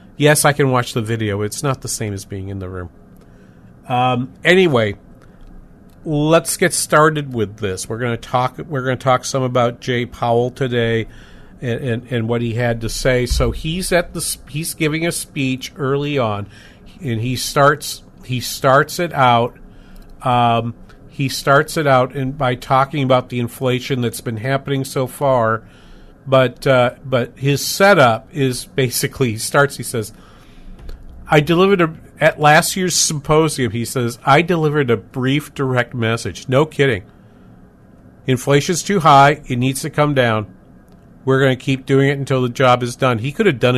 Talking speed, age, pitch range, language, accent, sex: 175 wpm, 50-69, 115-140 Hz, English, American, male